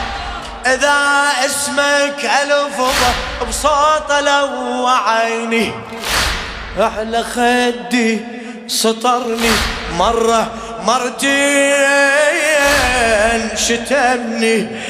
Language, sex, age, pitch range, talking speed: Arabic, male, 30-49, 235-285 Hz, 50 wpm